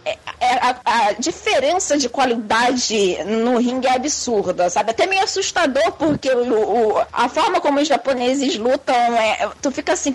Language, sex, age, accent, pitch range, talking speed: Portuguese, female, 20-39, Brazilian, 220-275 Hz, 140 wpm